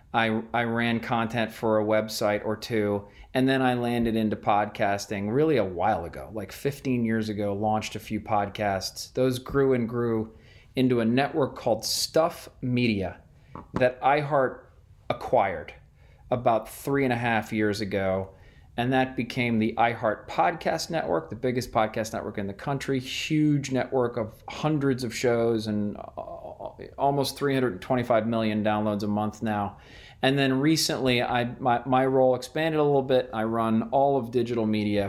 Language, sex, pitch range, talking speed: English, male, 105-130 Hz, 155 wpm